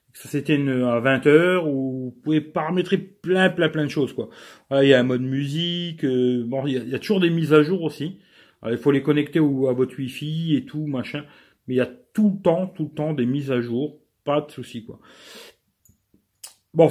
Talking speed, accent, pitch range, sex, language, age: 240 wpm, French, 125-160 Hz, male, French, 40-59